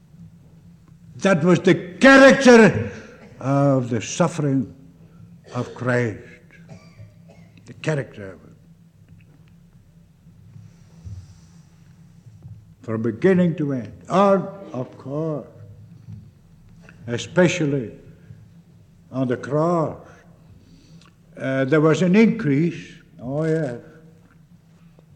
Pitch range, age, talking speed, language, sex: 135-170 Hz, 60-79, 75 wpm, English, male